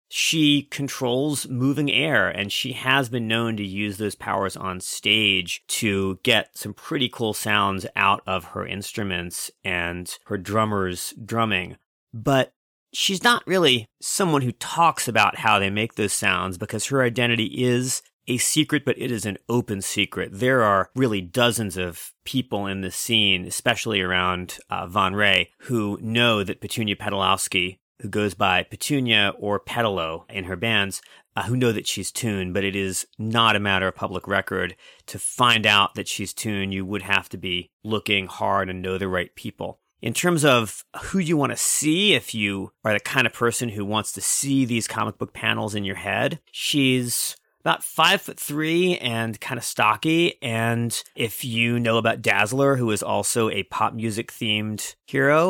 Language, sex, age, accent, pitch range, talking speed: English, male, 30-49, American, 100-125 Hz, 175 wpm